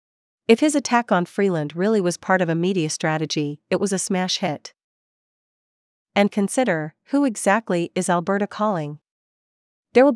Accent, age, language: American, 40-59, English